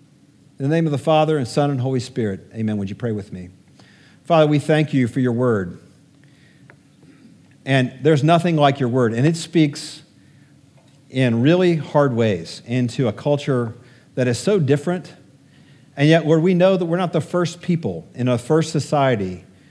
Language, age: English, 50-69